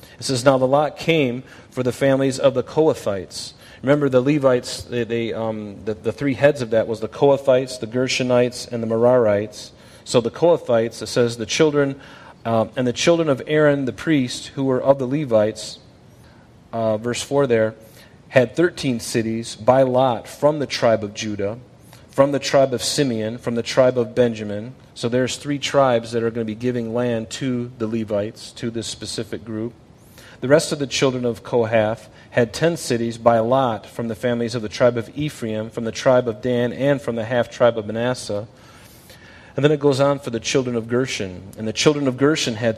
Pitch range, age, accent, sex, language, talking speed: 110-130 Hz, 40-59, American, male, English, 200 wpm